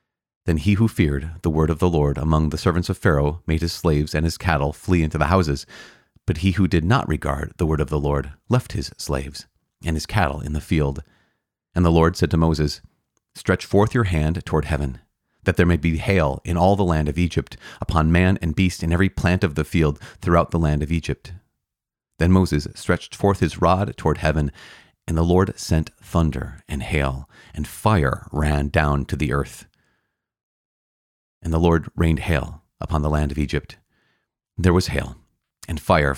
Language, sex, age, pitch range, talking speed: English, male, 30-49, 75-90 Hz, 195 wpm